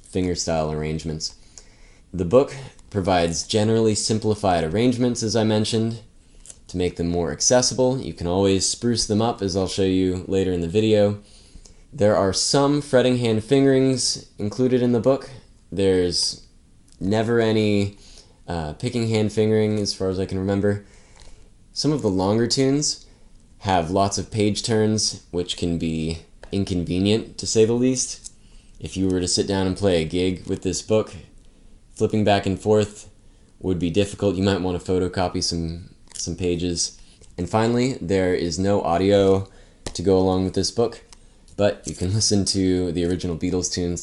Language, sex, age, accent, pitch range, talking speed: English, male, 20-39, American, 90-110 Hz, 165 wpm